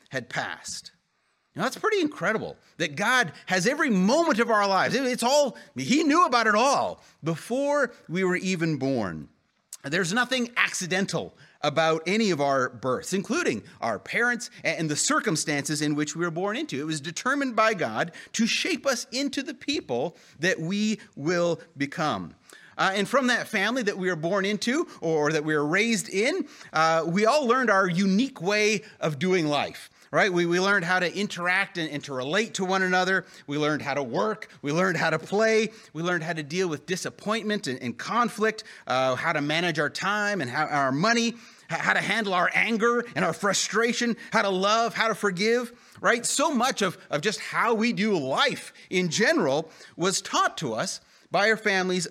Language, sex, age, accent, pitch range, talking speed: English, male, 30-49, American, 165-230 Hz, 190 wpm